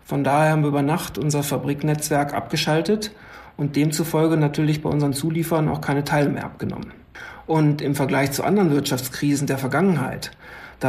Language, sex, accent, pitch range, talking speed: German, male, German, 145-165 Hz, 160 wpm